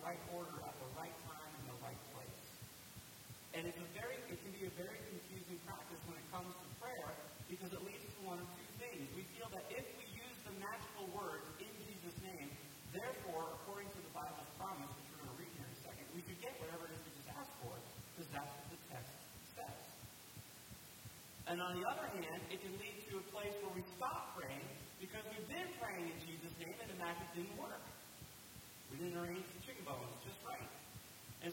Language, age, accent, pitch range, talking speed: English, 40-59, American, 145-185 Hz, 215 wpm